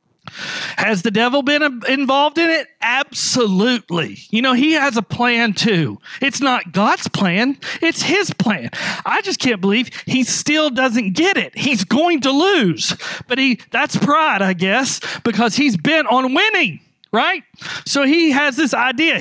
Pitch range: 195-275 Hz